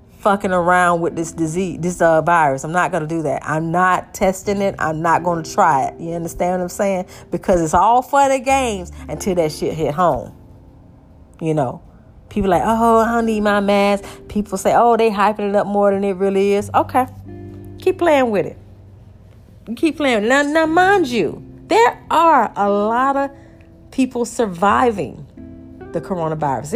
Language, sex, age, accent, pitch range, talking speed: English, female, 40-59, American, 130-200 Hz, 180 wpm